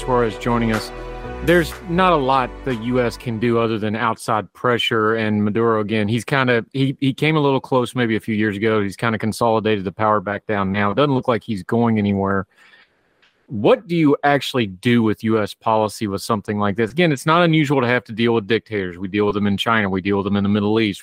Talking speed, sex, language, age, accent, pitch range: 240 wpm, male, English, 30-49, American, 105-125 Hz